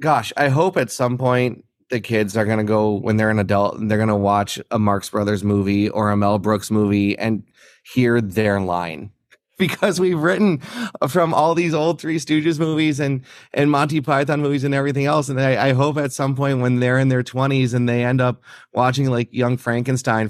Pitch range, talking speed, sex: 110-135 Hz, 215 wpm, male